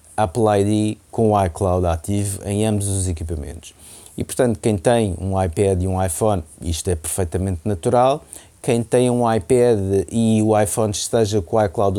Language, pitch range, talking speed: Portuguese, 90-120 Hz, 170 wpm